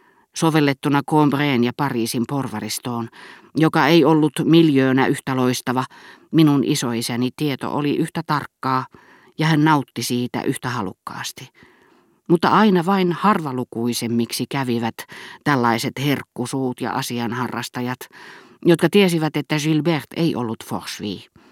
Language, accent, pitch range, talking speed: Finnish, native, 120-155 Hz, 110 wpm